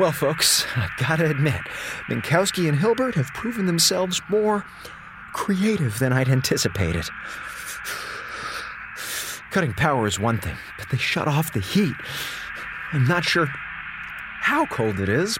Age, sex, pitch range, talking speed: 30-49, male, 110-165 Hz, 135 wpm